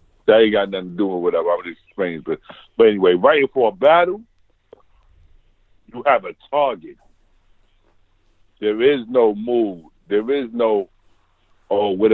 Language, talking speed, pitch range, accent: English, 155 wpm, 95-145 Hz, American